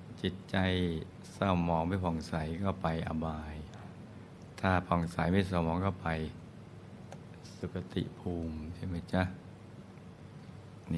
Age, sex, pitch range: 60-79, male, 85-100 Hz